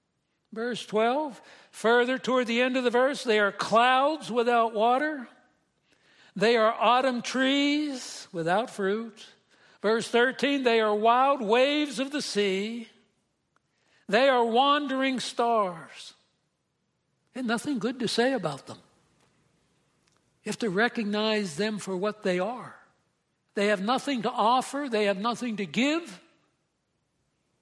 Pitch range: 205-250 Hz